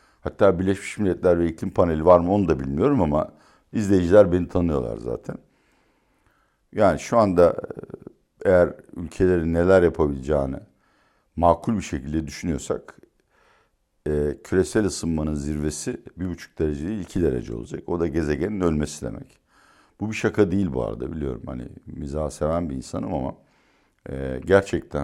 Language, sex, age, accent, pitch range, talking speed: Turkish, male, 60-79, native, 70-90 Hz, 135 wpm